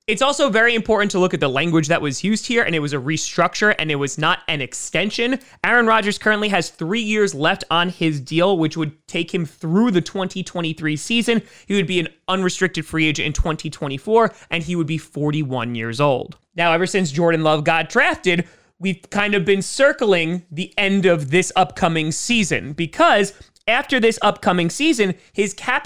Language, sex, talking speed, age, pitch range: English, male, 195 wpm, 20-39, 155-195 Hz